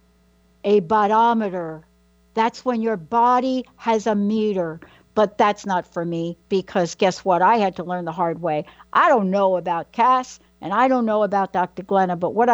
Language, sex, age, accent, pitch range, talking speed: English, female, 60-79, American, 185-260 Hz, 180 wpm